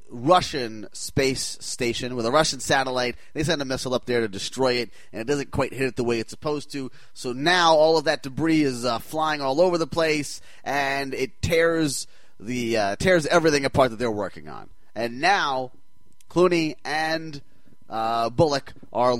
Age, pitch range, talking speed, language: 30-49, 125-160 Hz, 185 wpm, English